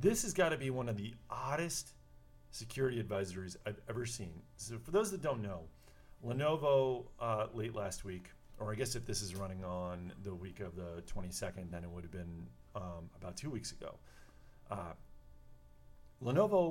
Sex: male